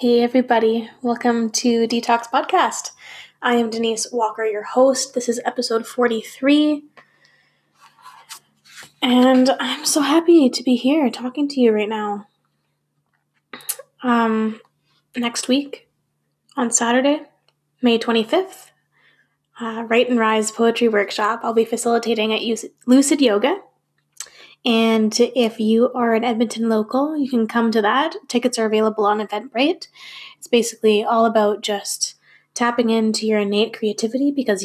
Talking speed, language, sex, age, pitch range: 130 wpm, English, female, 10-29, 220-260 Hz